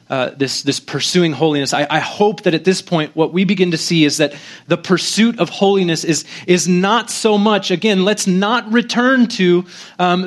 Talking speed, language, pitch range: 200 wpm, English, 155-215 Hz